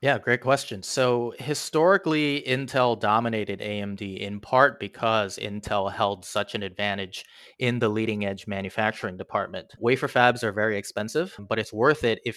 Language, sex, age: English, male, 30-49